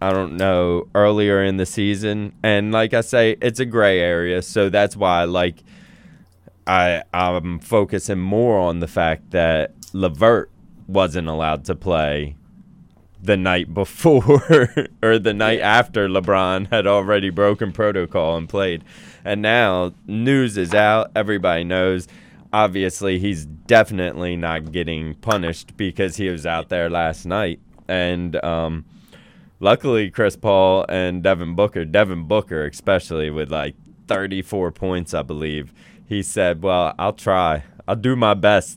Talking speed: 140 wpm